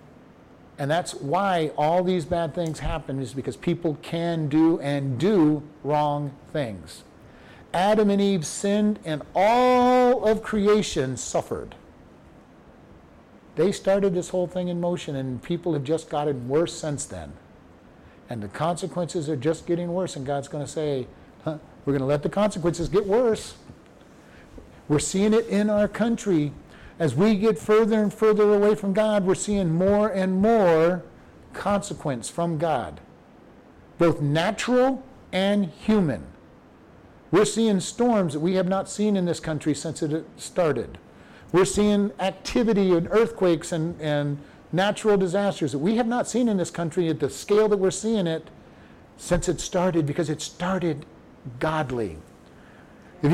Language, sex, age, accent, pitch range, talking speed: English, male, 50-69, American, 155-210 Hz, 150 wpm